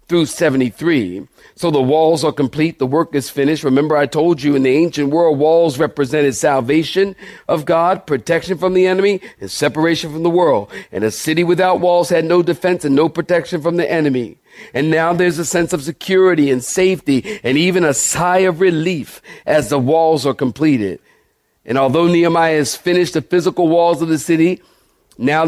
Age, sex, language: 50-69, male, English